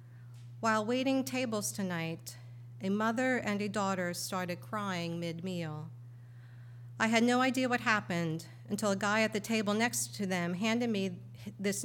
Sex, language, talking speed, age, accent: female, English, 150 wpm, 50-69, American